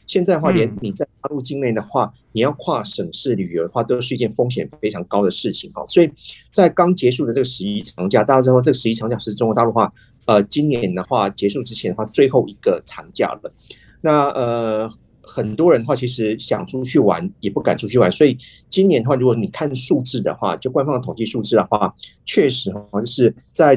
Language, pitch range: Chinese, 105-140 Hz